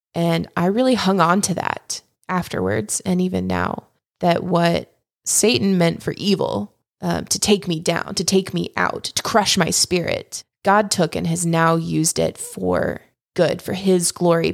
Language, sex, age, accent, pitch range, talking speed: English, female, 20-39, American, 165-200 Hz, 175 wpm